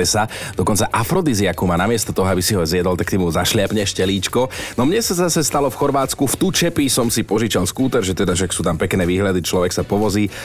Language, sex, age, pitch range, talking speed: Slovak, male, 30-49, 95-130 Hz, 220 wpm